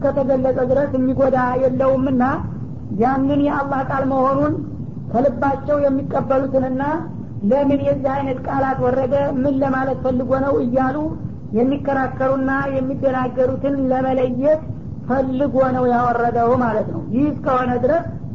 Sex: female